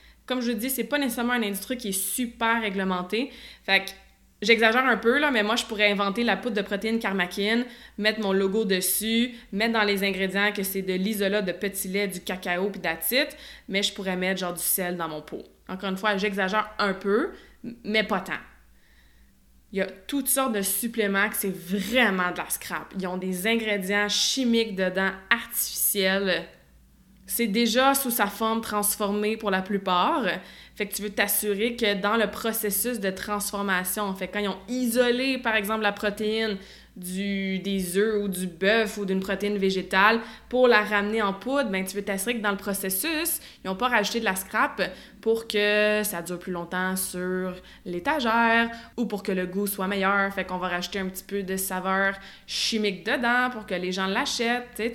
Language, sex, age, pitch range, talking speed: French, female, 20-39, 190-225 Hz, 190 wpm